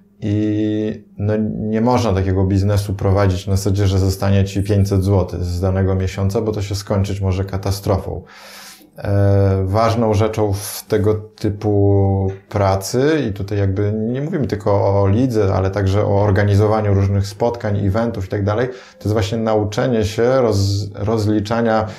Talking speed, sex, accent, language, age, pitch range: 145 wpm, male, native, Polish, 20-39, 95-110 Hz